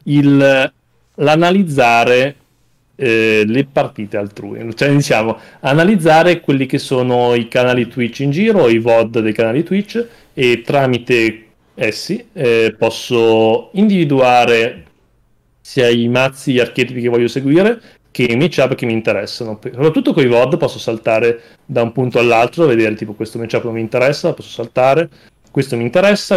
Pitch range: 115-140 Hz